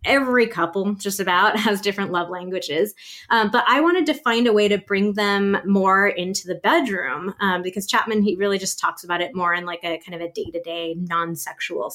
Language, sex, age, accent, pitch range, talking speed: English, female, 20-39, American, 180-215 Hz, 215 wpm